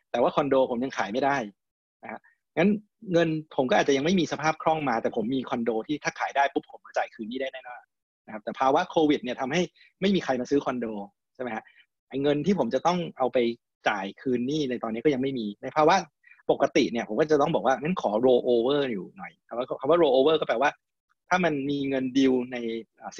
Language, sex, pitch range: Thai, male, 125-165 Hz